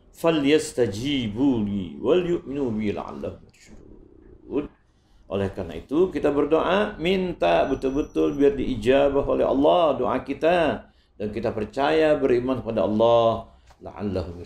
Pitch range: 100-140 Hz